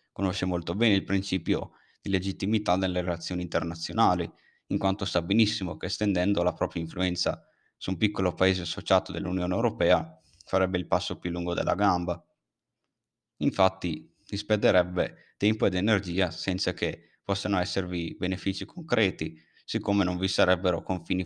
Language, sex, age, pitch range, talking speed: Italian, male, 20-39, 90-100 Hz, 140 wpm